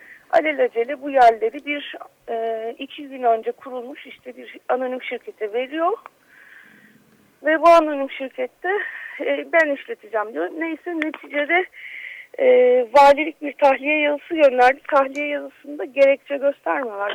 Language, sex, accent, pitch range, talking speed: Turkish, female, native, 235-300 Hz, 120 wpm